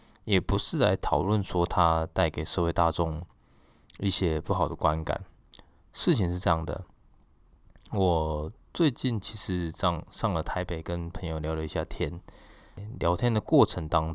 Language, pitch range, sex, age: Chinese, 80-100 Hz, male, 20-39